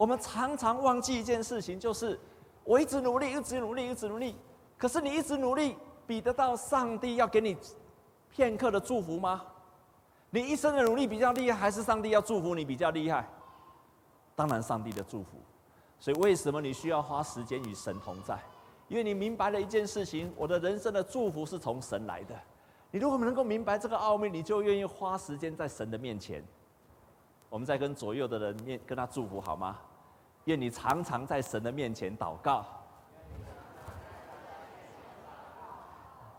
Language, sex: Chinese, male